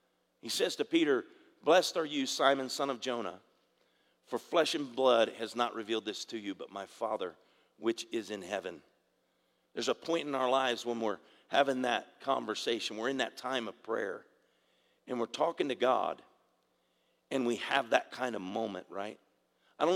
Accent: American